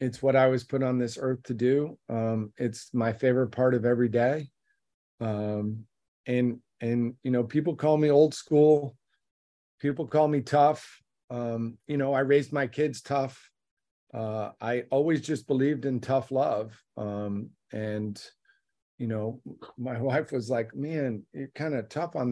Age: 40-59